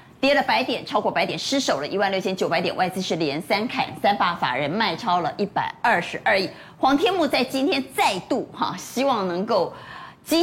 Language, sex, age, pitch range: Chinese, female, 30-49, 195-285 Hz